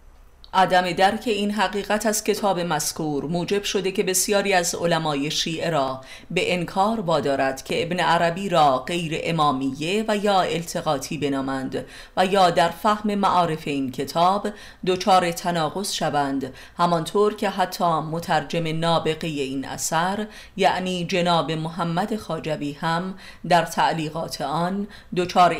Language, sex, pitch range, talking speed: Persian, female, 145-185 Hz, 130 wpm